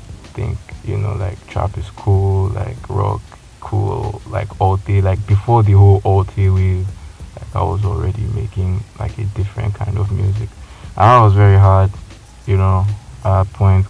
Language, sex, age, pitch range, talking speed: English, male, 20-39, 95-105 Hz, 175 wpm